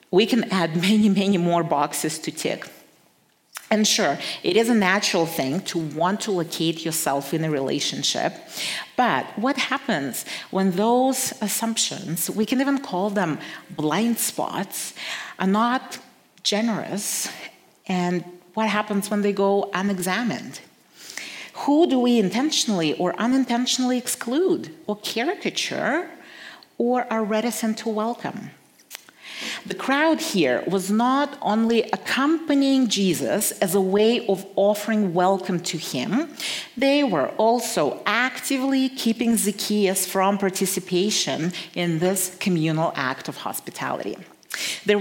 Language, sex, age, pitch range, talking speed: English, female, 40-59, 185-245 Hz, 125 wpm